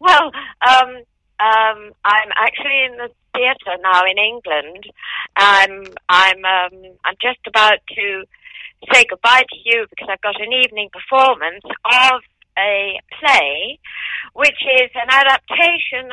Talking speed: 130 wpm